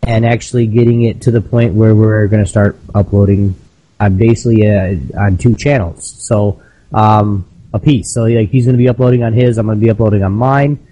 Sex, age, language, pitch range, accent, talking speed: male, 20-39, English, 100-120 Hz, American, 205 wpm